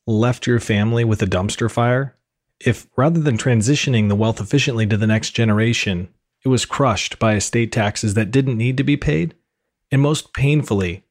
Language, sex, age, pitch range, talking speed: English, male, 40-59, 110-140 Hz, 180 wpm